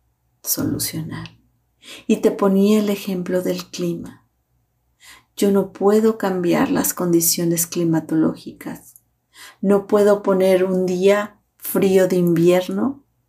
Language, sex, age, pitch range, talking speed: Spanish, female, 40-59, 155-195 Hz, 105 wpm